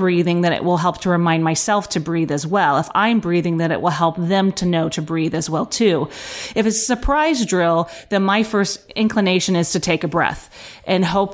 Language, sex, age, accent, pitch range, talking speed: English, female, 30-49, American, 170-200 Hz, 230 wpm